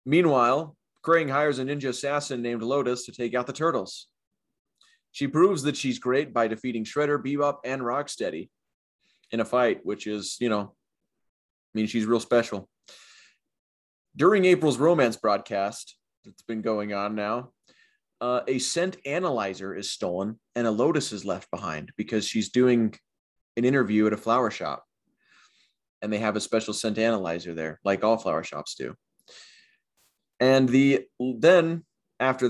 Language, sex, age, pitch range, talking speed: English, male, 30-49, 110-140 Hz, 155 wpm